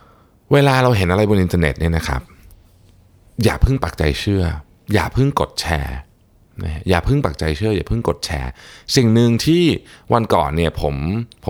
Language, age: Thai, 20-39